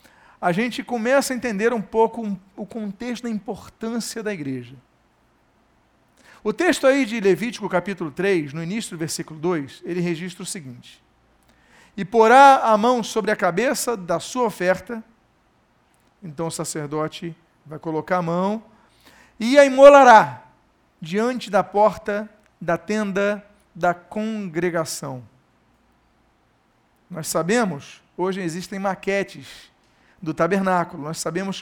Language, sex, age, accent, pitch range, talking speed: Portuguese, male, 50-69, Brazilian, 165-220 Hz, 125 wpm